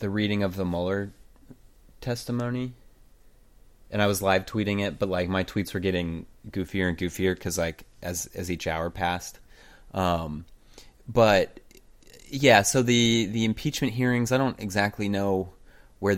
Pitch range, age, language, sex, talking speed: 85-100 Hz, 30-49, English, male, 150 wpm